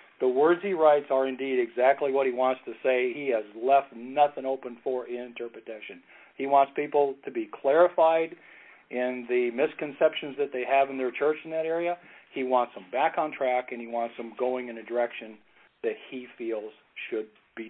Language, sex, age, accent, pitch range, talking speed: English, male, 50-69, American, 130-170 Hz, 190 wpm